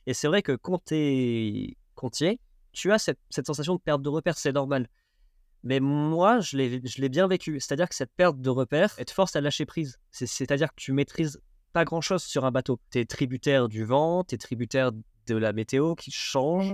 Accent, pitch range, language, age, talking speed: French, 125-170 Hz, French, 20-39, 210 wpm